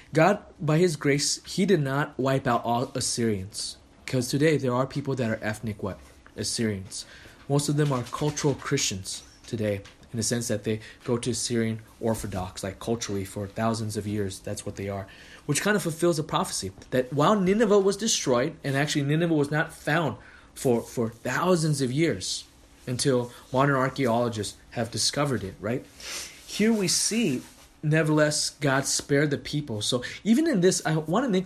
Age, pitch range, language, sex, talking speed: 20-39, 110-155 Hz, English, male, 175 wpm